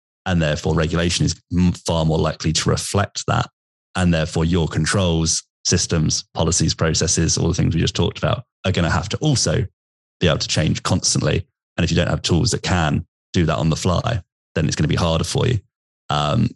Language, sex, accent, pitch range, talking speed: English, male, British, 80-100 Hz, 200 wpm